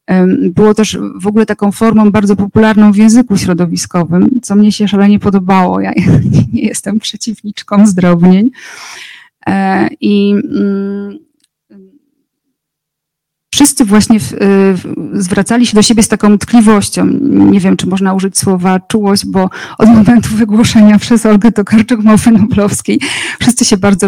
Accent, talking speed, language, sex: native, 120 wpm, Polish, female